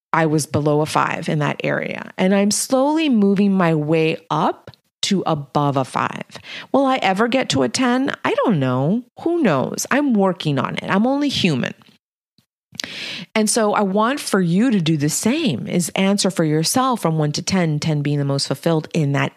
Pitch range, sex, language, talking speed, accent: 165-240 Hz, female, English, 195 wpm, American